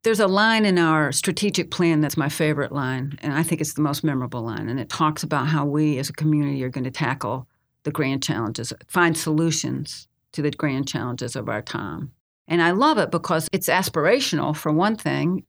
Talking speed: 210 wpm